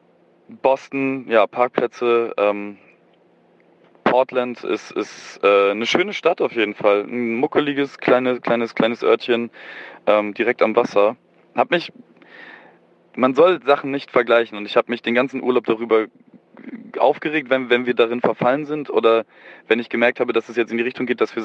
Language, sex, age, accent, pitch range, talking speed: German, male, 20-39, German, 100-130 Hz, 170 wpm